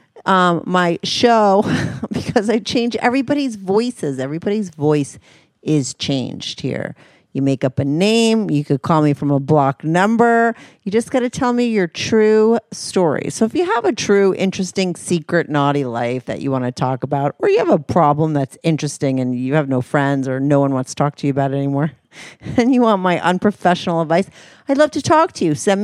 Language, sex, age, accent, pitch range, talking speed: English, female, 40-59, American, 145-210 Hz, 200 wpm